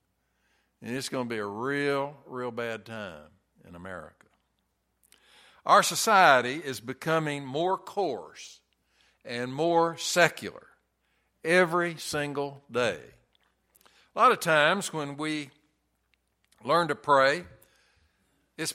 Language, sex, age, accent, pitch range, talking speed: English, male, 60-79, American, 135-185 Hz, 110 wpm